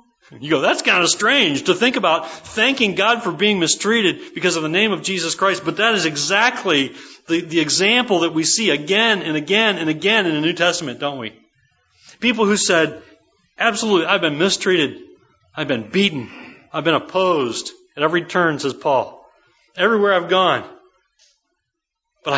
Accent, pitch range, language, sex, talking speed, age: American, 145-220 Hz, English, male, 170 wpm, 40-59